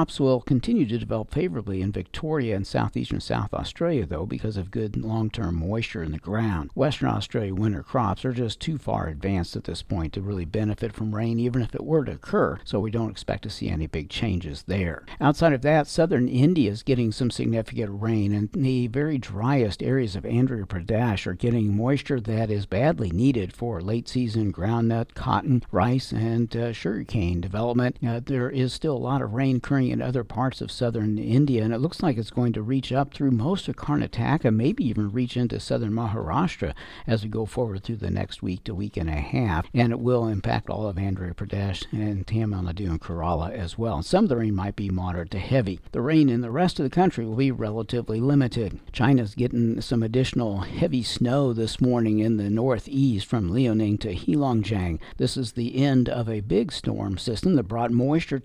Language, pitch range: English, 100-125 Hz